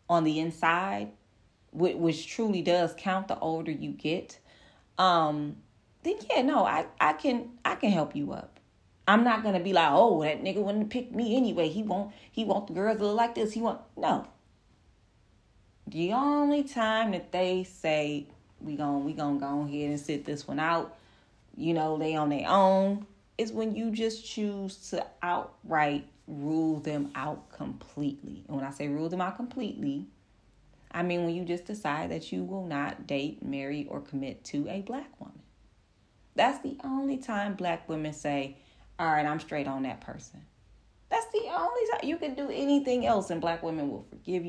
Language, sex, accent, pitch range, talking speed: English, female, American, 150-210 Hz, 180 wpm